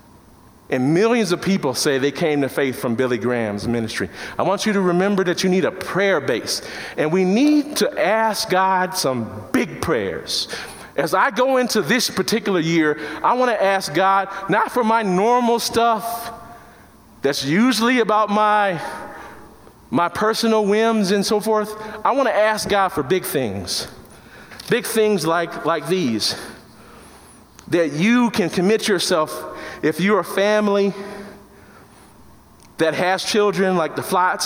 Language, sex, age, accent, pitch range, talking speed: English, male, 40-59, American, 160-215 Hz, 155 wpm